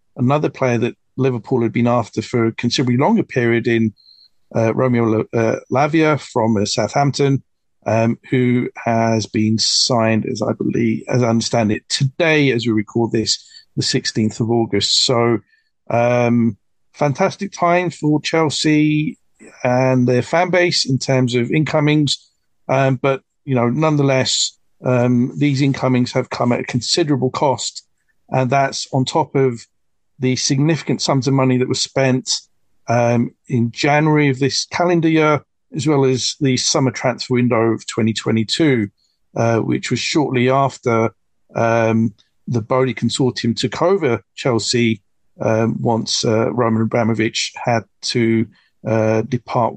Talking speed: 140 wpm